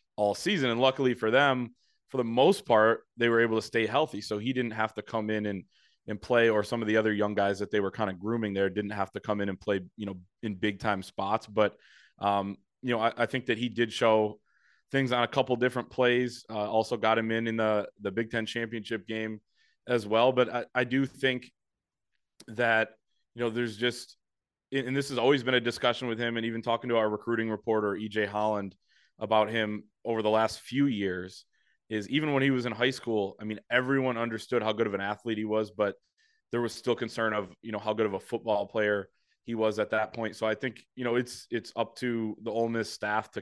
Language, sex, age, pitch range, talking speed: English, male, 20-39, 105-120 Hz, 235 wpm